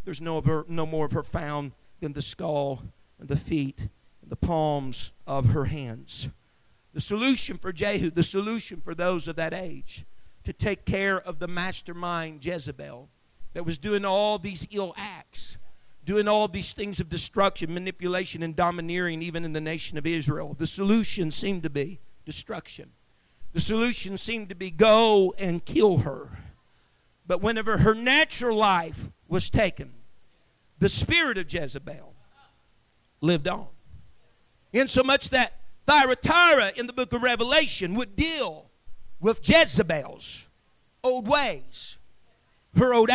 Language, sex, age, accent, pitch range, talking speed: English, male, 50-69, American, 160-240 Hz, 150 wpm